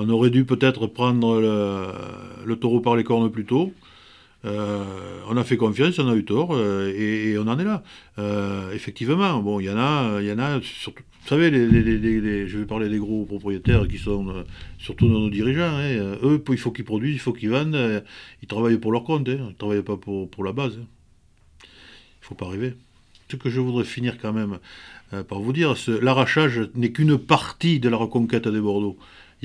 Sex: male